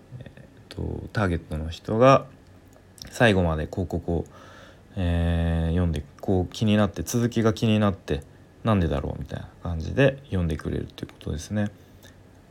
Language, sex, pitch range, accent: Japanese, male, 85-105 Hz, native